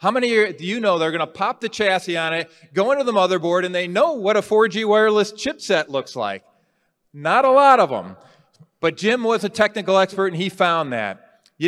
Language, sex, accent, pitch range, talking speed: English, male, American, 145-185 Hz, 215 wpm